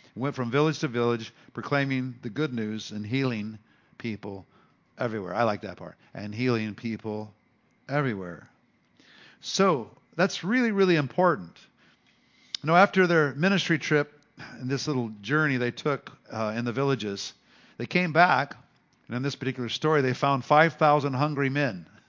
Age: 50-69